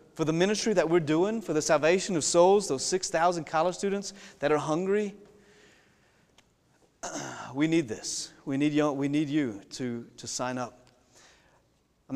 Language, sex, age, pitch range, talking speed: English, male, 30-49, 125-160 Hz, 150 wpm